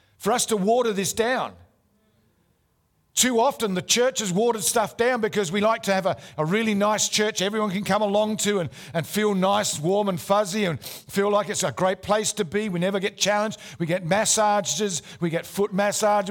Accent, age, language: Australian, 50-69, English